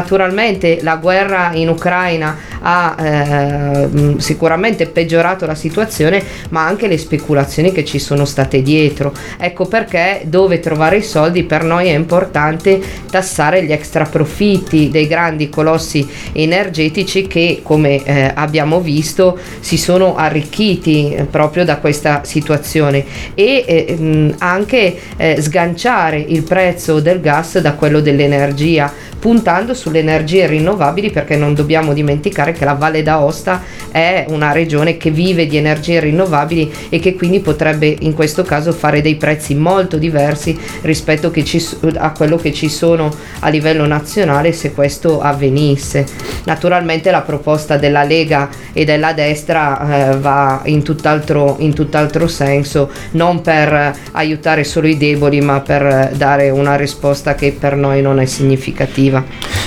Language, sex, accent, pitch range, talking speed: Italian, female, native, 145-170 Hz, 145 wpm